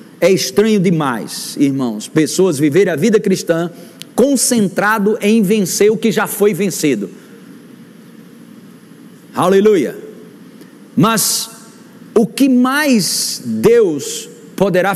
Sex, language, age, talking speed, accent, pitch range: male, Portuguese, 50-69, 95 wpm, Brazilian, 185-235 Hz